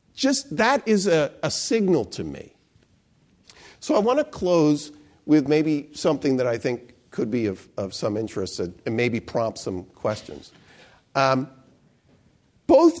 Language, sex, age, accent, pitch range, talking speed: English, male, 50-69, American, 110-145 Hz, 150 wpm